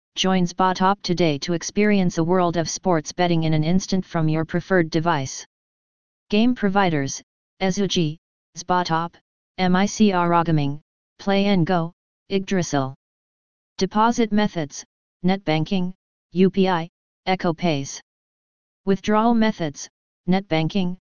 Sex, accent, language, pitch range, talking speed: female, American, English, 165-190 Hz, 105 wpm